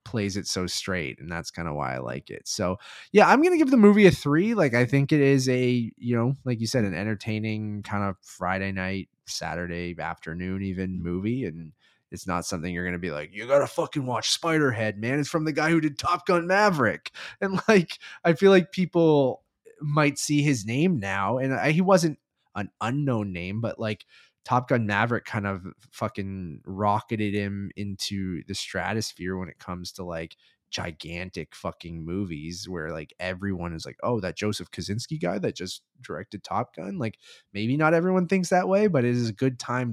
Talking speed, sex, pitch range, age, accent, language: 195 wpm, male, 95-140 Hz, 20-39, American, English